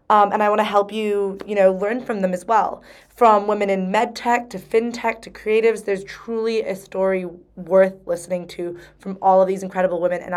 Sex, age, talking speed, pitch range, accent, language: female, 20-39, 215 wpm, 185-225 Hz, American, English